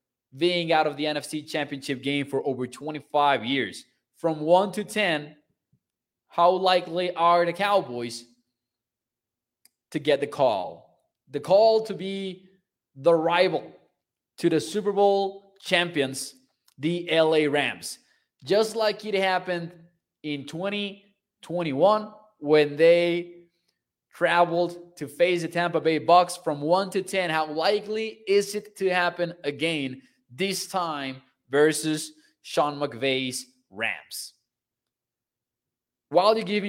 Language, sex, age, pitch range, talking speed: English, male, 20-39, 140-180 Hz, 120 wpm